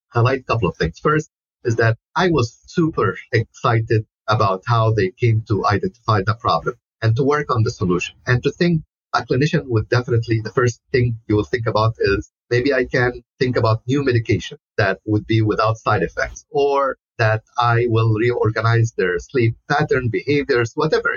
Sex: male